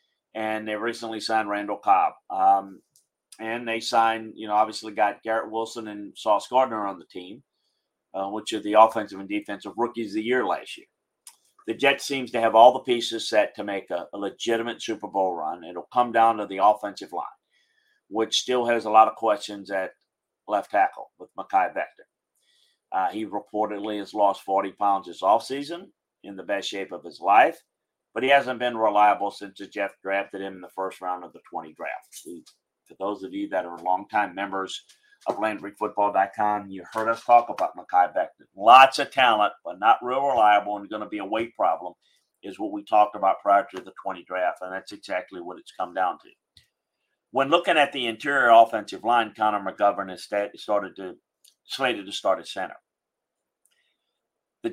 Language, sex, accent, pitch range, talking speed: English, male, American, 100-120 Hz, 190 wpm